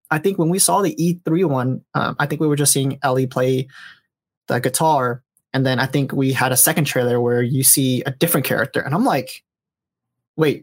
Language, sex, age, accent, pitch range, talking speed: English, male, 20-39, American, 130-170 Hz, 215 wpm